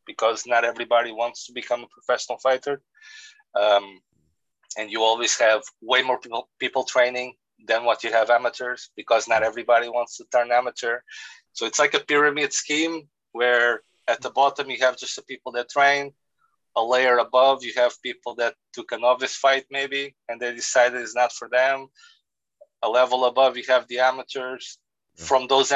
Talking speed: 175 wpm